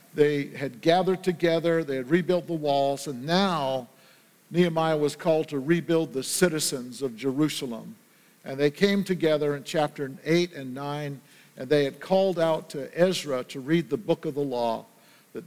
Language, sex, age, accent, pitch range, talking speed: English, male, 50-69, American, 140-175 Hz, 170 wpm